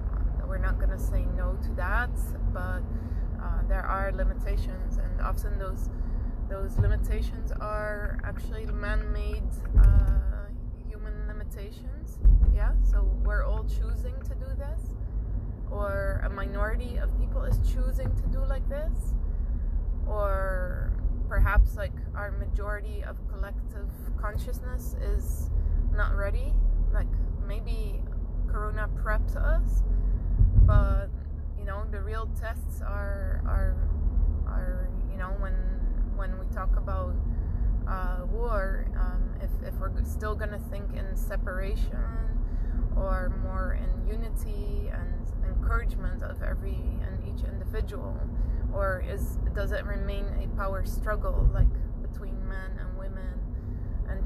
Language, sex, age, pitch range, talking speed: English, female, 20-39, 75-90 Hz, 125 wpm